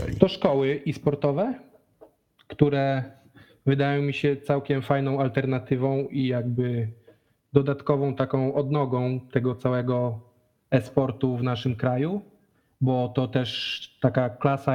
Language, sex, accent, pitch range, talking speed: Polish, male, native, 130-150 Hz, 105 wpm